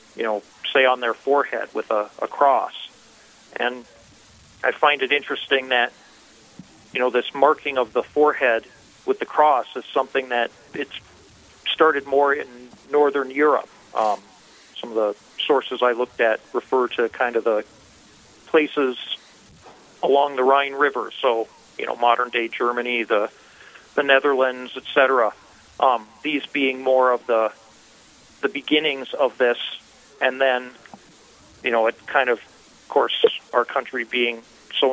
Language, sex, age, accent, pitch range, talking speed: English, male, 40-59, American, 120-140 Hz, 150 wpm